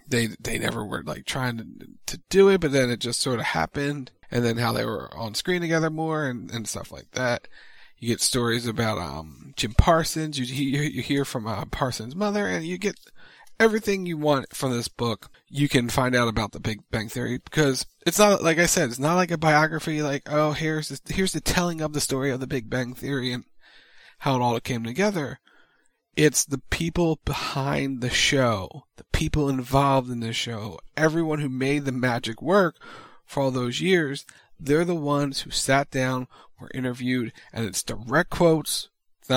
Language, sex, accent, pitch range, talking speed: English, male, American, 120-155 Hz, 200 wpm